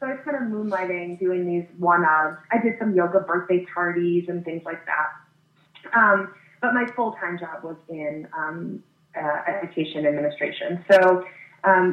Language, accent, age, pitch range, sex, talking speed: English, American, 20-39, 160-190 Hz, female, 170 wpm